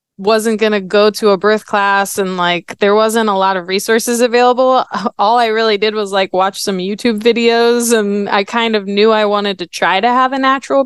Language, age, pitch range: English, 20-39, 185-220 Hz